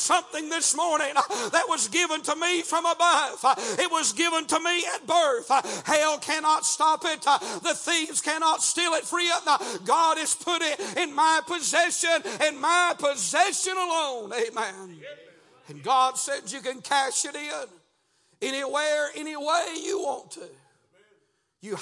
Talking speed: 145 wpm